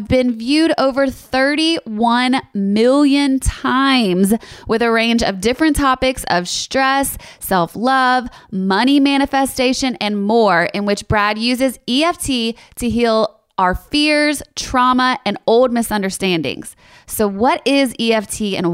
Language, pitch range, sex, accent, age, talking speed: English, 185-255 Hz, female, American, 20-39, 120 wpm